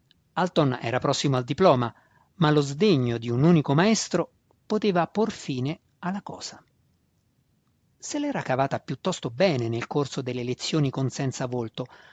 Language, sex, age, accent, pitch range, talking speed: Italian, male, 50-69, native, 125-175 Hz, 145 wpm